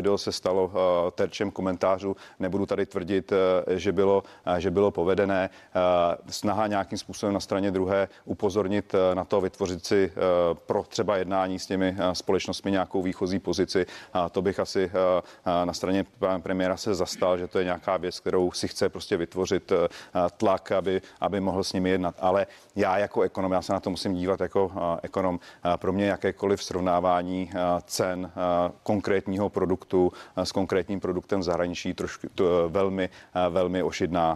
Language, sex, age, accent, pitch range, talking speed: Czech, male, 40-59, native, 90-100 Hz, 150 wpm